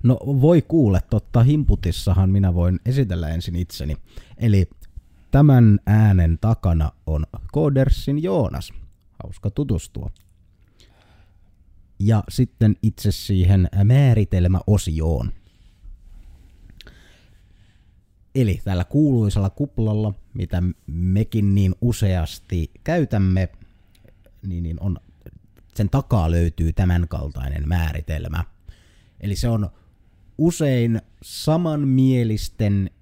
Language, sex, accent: Finnish, male, native